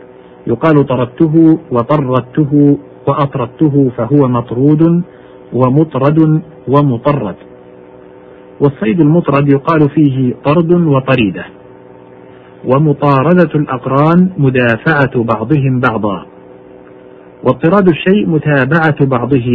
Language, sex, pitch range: Arabic, male, 115-150 Hz